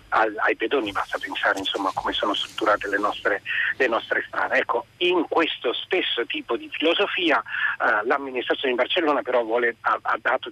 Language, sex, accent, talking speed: Italian, male, native, 160 wpm